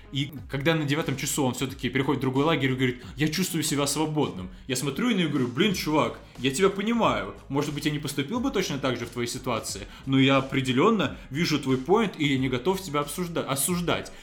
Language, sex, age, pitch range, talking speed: Russian, male, 20-39, 130-165 Hz, 225 wpm